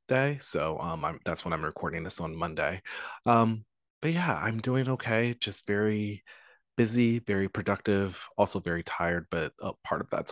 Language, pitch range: English, 100-130 Hz